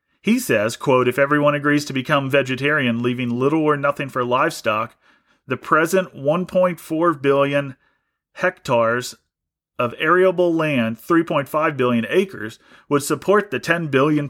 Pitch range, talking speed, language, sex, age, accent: 145-220 Hz, 130 wpm, English, male, 40-59, American